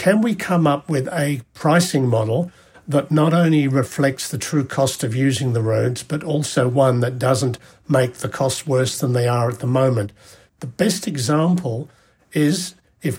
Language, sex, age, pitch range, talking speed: English, male, 60-79, 130-160 Hz, 175 wpm